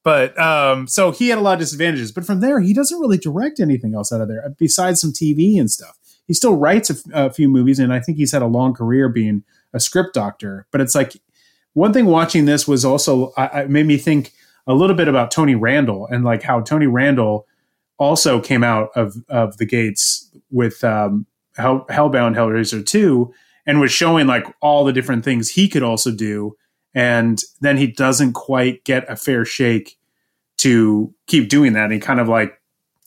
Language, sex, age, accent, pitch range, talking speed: English, male, 30-49, American, 115-145 Hz, 205 wpm